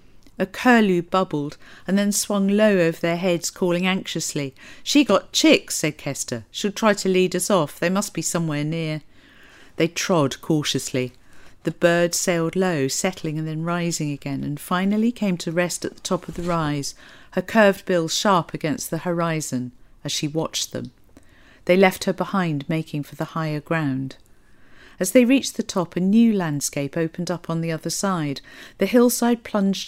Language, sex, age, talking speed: English, female, 50-69, 175 wpm